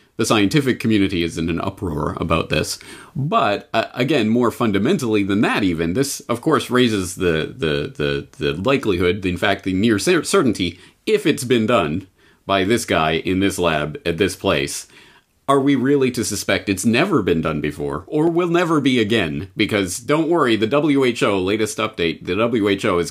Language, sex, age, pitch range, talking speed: English, male, 30-49, 85-110 Hz, 180 wpm